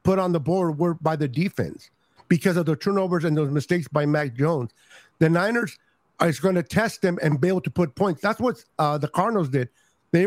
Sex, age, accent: male, 50-69, American